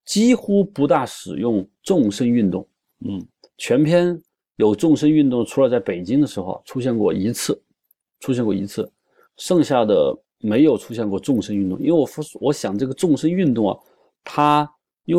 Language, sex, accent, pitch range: Chinese, male, native, 105-155 Hz